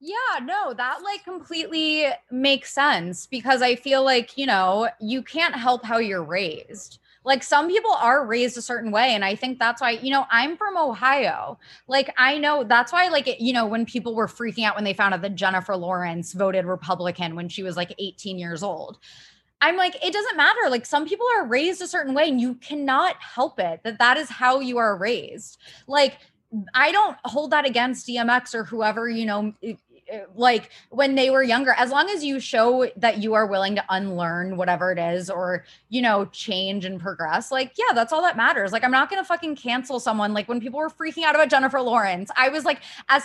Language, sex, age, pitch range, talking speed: English, female, 20-39, 205-280 Hz, 215 wpm